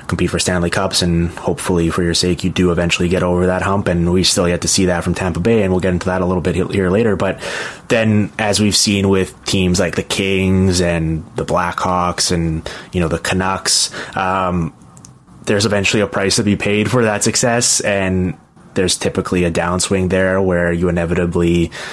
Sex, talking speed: male, 205 wpm